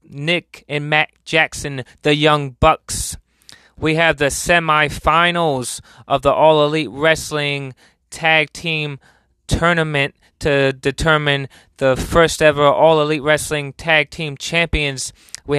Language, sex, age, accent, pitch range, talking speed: English, male, 20-39, American, 130-155 Hz, 120 wpm